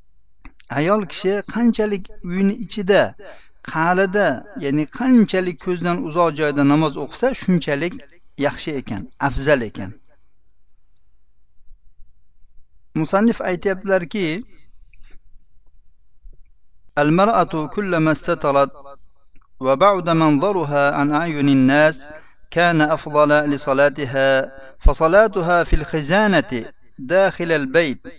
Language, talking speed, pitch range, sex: Russian, 70 wpm, 150-180 Hz, male